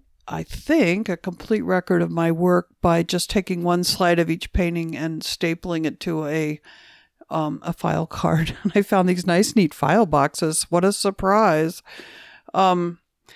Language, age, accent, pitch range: English, 60-79, American, 170-215 Hz